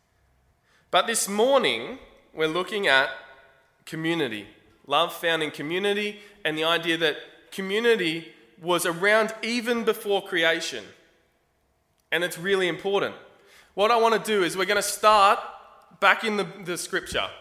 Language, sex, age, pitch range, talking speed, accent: English, male, 20-39, 140-200 Hz, 140 wpm, Australian